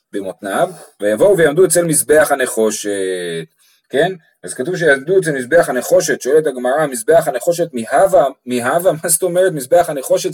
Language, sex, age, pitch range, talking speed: Hebrew, male, 30-49, 130-185 Hz, 140 wpm